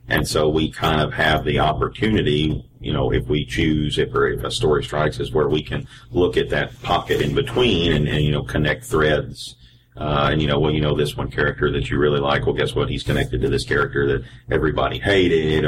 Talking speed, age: 230 wpm, 40-59